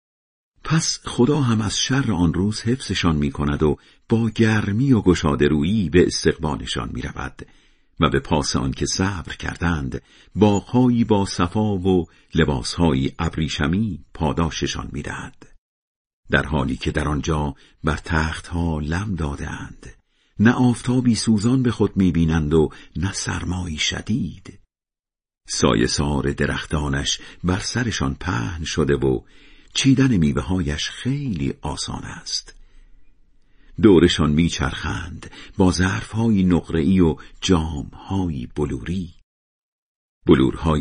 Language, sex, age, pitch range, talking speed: Persian, male, 50-69, 75-110 Hz, 110 wpm